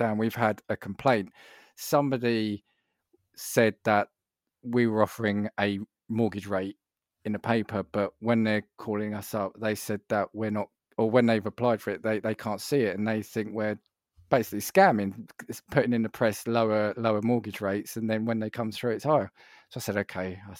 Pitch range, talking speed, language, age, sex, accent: 105-125 Hz, 190 wpm, English, 20-39, male, British